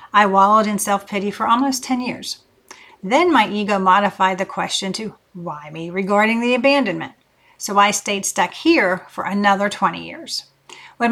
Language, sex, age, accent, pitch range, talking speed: English, female, 40-59, American, 195-230 Hz, 160 wpm